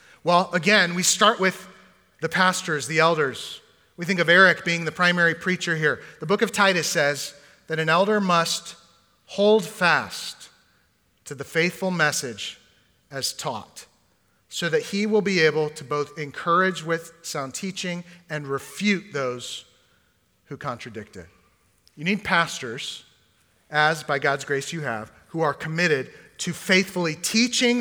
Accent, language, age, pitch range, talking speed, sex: American, English, 40-59, 145-180 Hz, 150 wpm, male